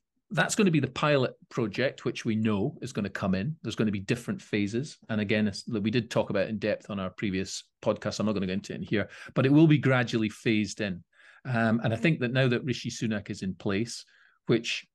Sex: male